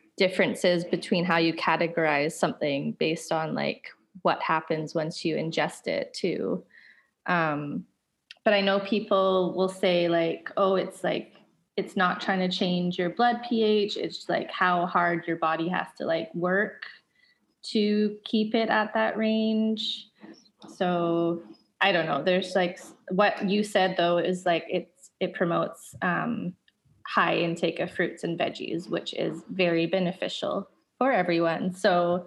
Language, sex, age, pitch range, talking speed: English, female, 20-39, 175-220 Hz, 150 wpm